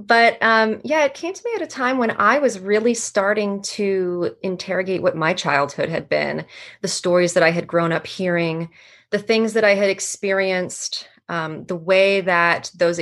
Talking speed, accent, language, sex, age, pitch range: 190 wpm, American, English, female, 30-49, 170-215 Hz